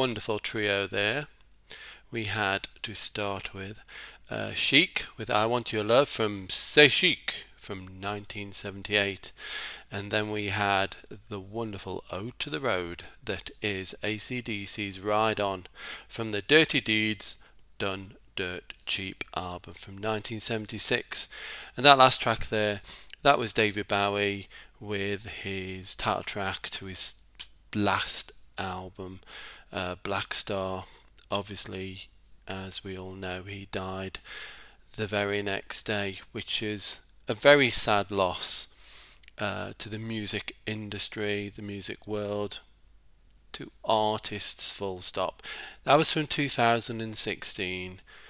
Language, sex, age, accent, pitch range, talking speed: English, male, 40-59, British, 100-110 Hz, 120 wpm